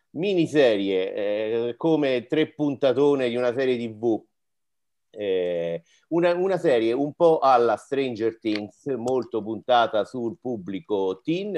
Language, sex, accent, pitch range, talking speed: Italian, male, native, 110-150 Hz, 120 wpm